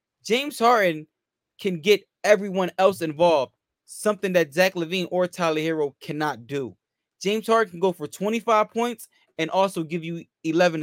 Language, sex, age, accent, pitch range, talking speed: English, male, 20-39, American, 150-185 Hz, 155 wpm